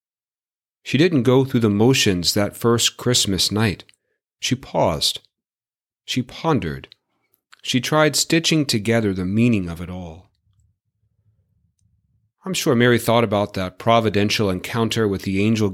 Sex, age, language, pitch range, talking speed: male, 40-59, English, 100-120 Hz, 130 wpm